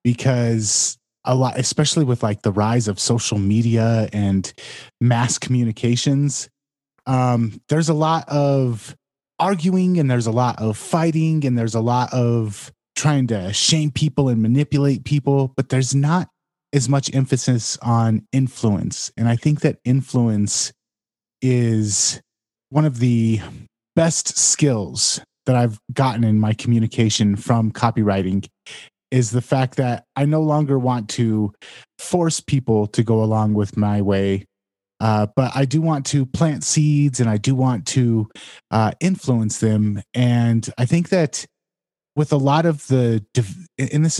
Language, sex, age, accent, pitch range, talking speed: English, male, 30-49, American, 115-140 Hz, 150 wpm